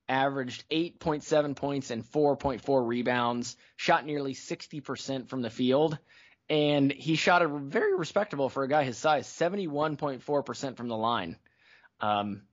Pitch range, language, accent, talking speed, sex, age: 125-155 Hz, English, American, 135 wpm, male, 20-39